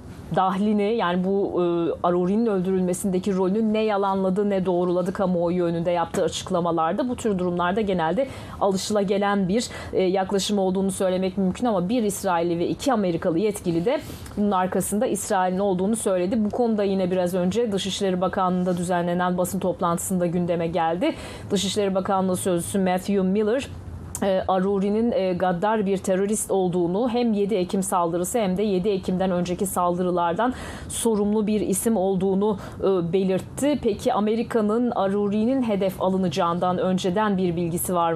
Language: Turkish